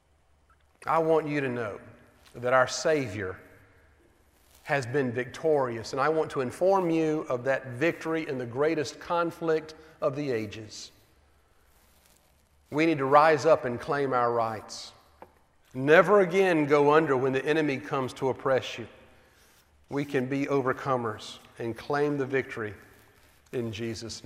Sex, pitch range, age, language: male, 105-155 Hz, 40-59, English